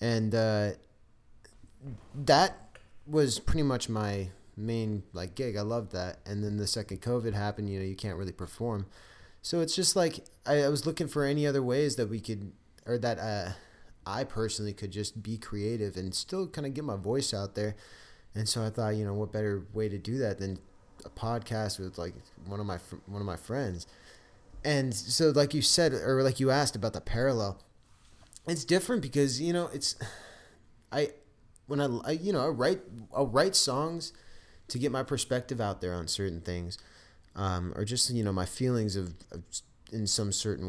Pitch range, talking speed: 100-135 Hz, 195 wpm